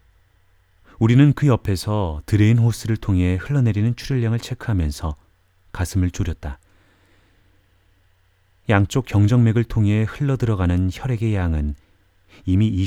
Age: 30-49